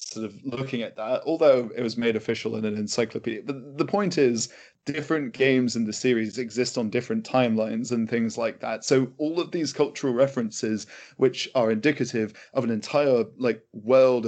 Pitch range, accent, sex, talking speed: 110-130 Hz, British, male, 185 wpm